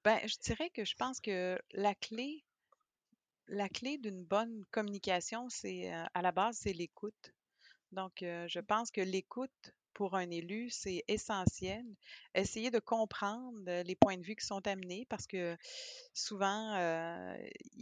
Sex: female